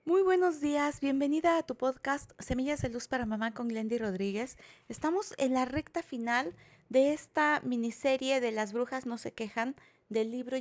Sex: female